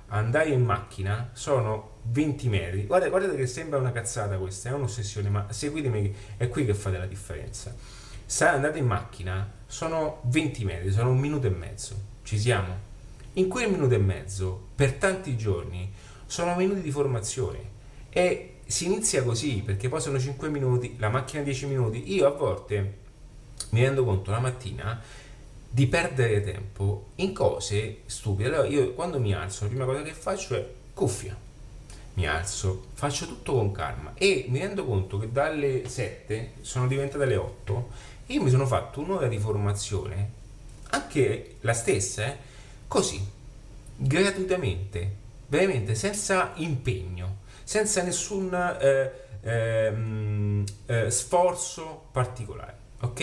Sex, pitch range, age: male, 105-140 Hz, 30-49